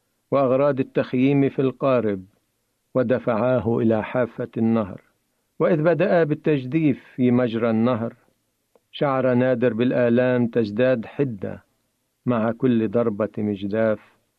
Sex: male